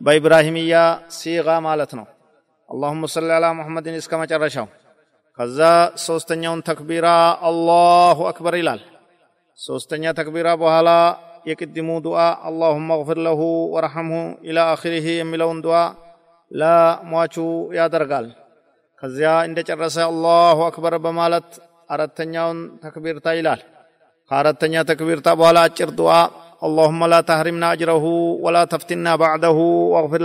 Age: 40-59